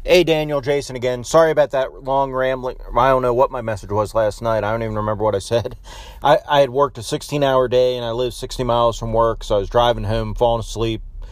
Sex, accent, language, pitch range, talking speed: male, American, English, 105-130 Hz, 245 wpm